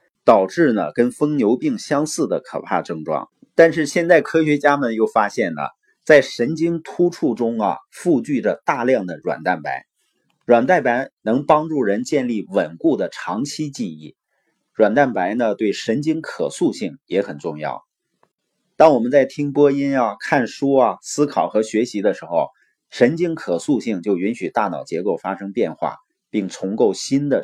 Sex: male